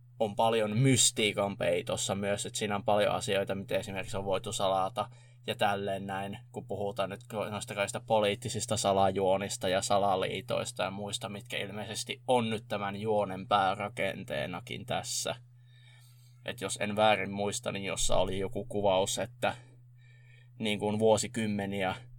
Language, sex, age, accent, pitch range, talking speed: Finnish, male, 20-39, native, 100-120 Hz, 135 wpm